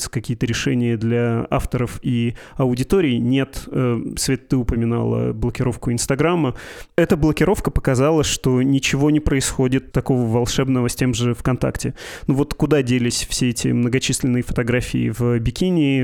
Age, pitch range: 20-39, 120-135 Hz